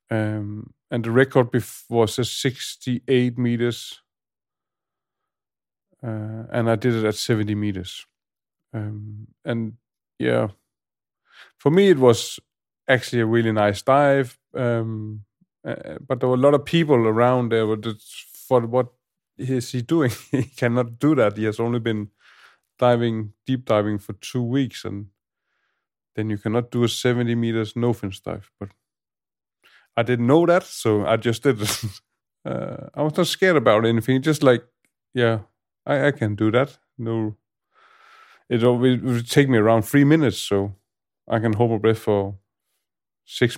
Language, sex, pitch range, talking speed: English, male, 110-130 Hz, 150 wpm